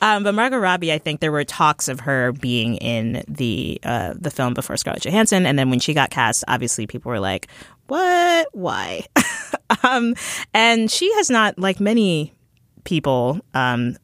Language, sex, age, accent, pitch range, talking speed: English, female, 20-39, American, 125-170 Hz, 175 wpm